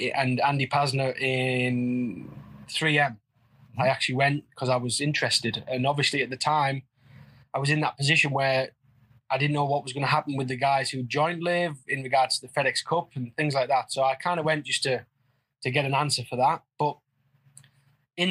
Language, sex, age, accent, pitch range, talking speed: English, male, 20-39, British, 130-145 Hz, 205 wpm